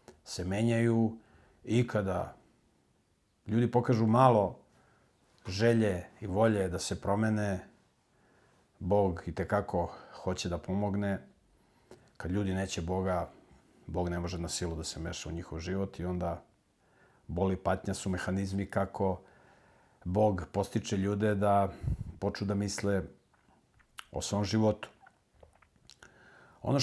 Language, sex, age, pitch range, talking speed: English, male, 50-69, 90-110 Hz, 115 wpm